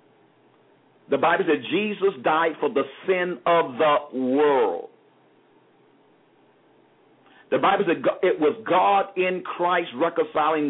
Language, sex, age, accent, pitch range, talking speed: English, male, 50-69, American, 125-175 Hz, 110 wpm